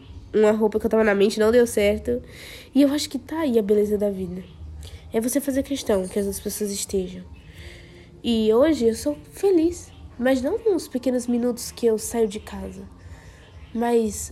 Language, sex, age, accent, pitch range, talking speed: Portuguese, female, 20-39, Brazilian, 185-240 Hz, 185 wpm